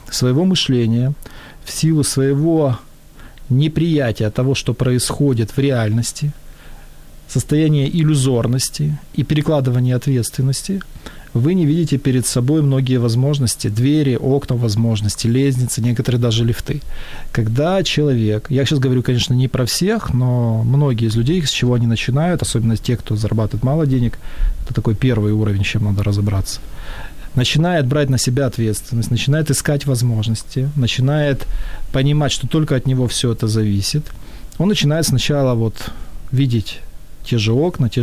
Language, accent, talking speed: Ukrainian, native, 135 wpm